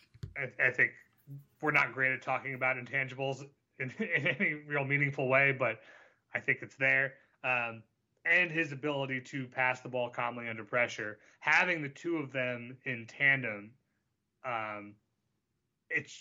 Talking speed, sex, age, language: 150 wpm, male, 30-49, English